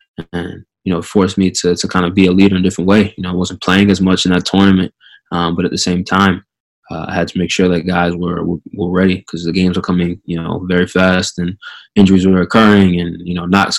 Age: 20-39